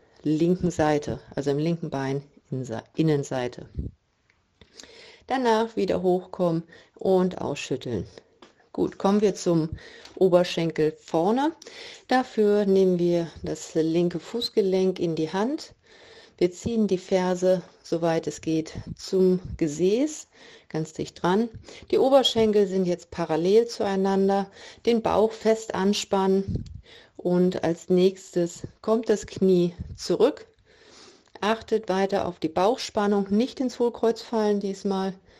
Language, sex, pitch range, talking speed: German, female, 170-220 Hz, 115 wpm